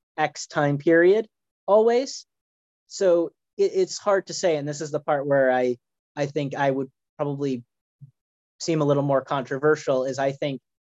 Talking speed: 160 wpm